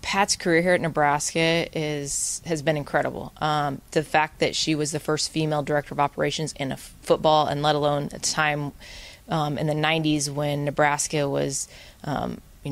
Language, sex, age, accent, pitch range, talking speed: English, female, 20-39, American, 150-165 Hz, 185 wpm